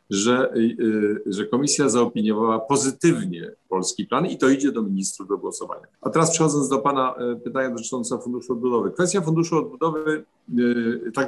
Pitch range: 120-160 Hz